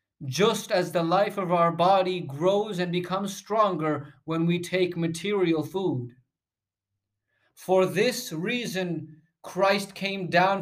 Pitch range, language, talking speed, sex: 160-210 Hz, Spanish, 125 wpm, male